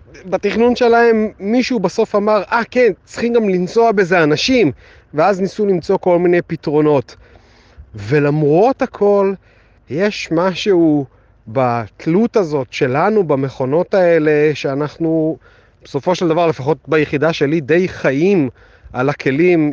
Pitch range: 140-190 Hz